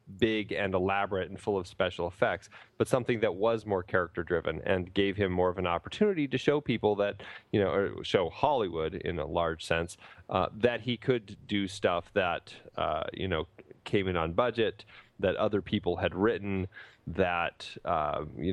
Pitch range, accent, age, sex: 95-115 Hz, American, 30-49, male